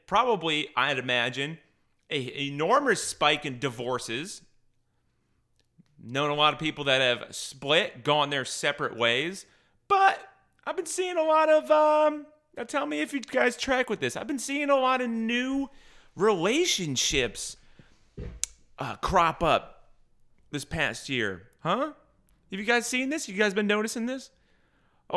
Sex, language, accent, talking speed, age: male, English, American, 150 wpm, 30-49